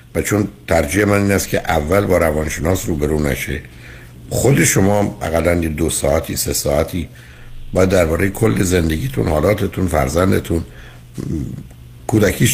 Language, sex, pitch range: Persian, male, 75-95 Hz